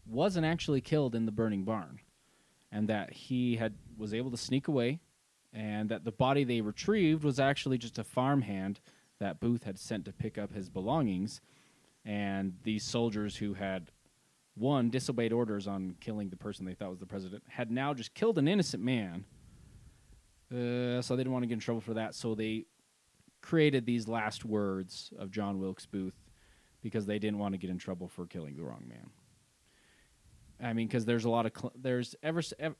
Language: English